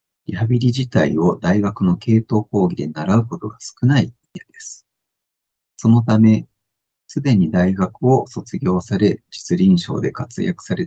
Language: Japanese